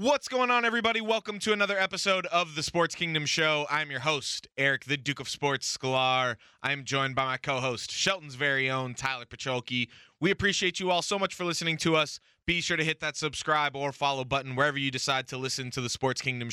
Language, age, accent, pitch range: English, 20-39, American, 120-145 Hz